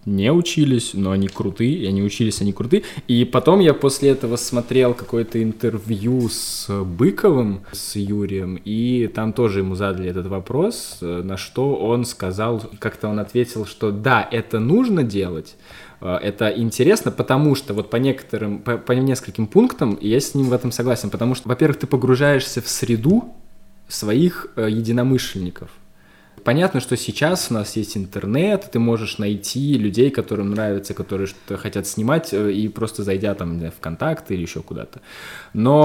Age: 20-39